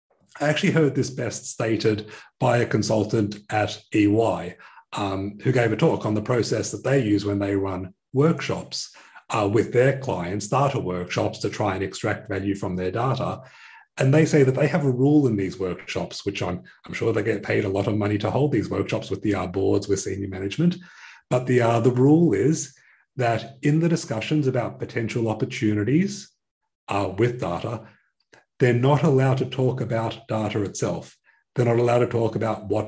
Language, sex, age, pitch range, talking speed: English, male, 30-49, 105-135 Hz, 190 wpm